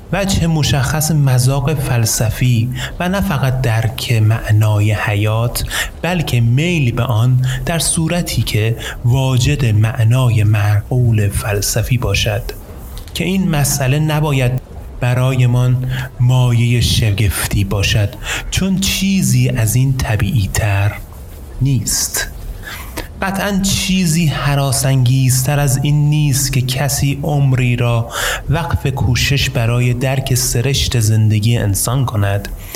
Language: Persian